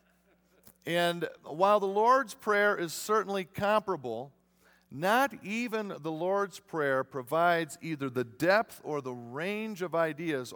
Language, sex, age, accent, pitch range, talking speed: English, male, 50-69, American, 115-170 Hz, 125 wpm